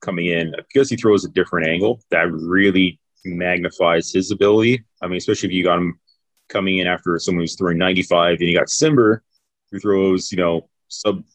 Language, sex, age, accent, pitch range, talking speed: English, male, 30-49, American, 85-105 Hz, 190 wpm